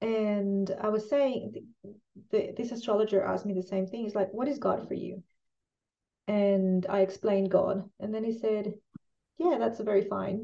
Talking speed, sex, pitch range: 170 wpm, female, 180-205 Hz